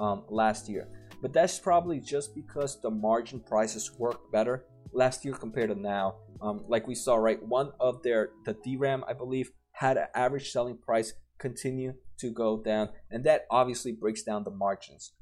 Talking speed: 180 wpm